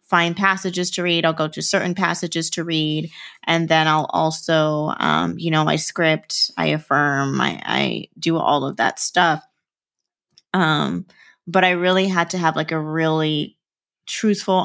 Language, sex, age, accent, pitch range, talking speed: English, female, 20-39, American, 160-200 Hz, 165 wpm